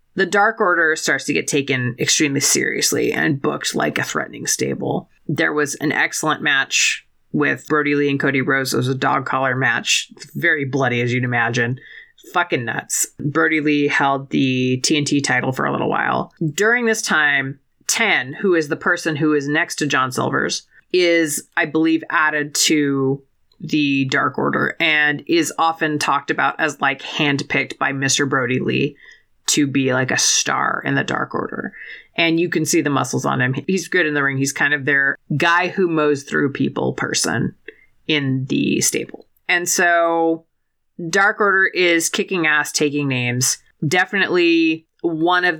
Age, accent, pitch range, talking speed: 30-49, American, 140-165 Hz, 170 wpm